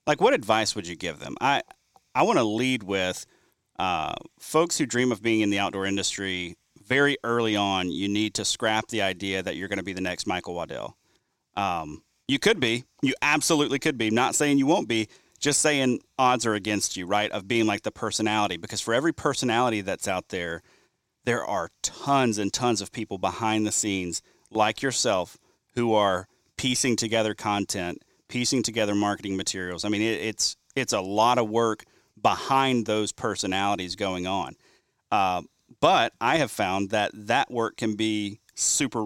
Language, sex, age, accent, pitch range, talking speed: English, male, 30-49, American, 100-120 Hz, 185 wpm